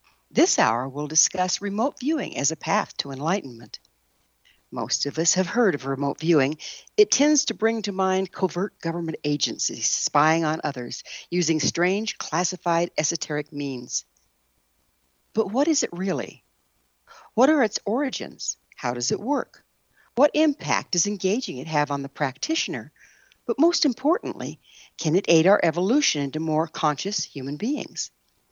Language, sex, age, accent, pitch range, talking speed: English, female, 60-79, American, 140-205 Hz, 150 wpm